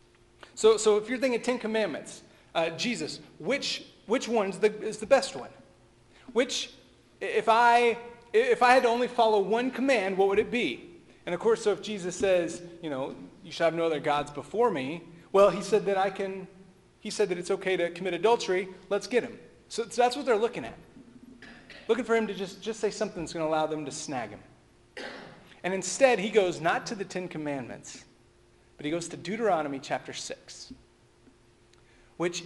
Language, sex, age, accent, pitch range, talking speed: English, male, 30-49, American, 150-220 Hz, 195 wpm